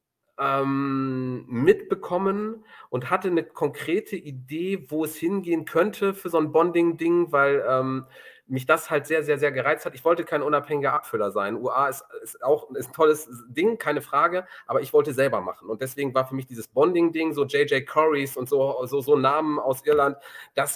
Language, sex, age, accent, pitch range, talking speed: German, male, 40-59, German, 135-170 Hz, 180 wpm